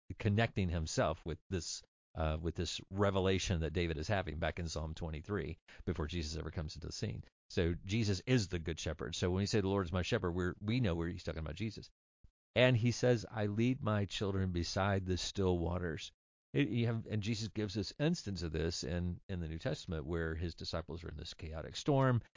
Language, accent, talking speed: English, American, 215 wpm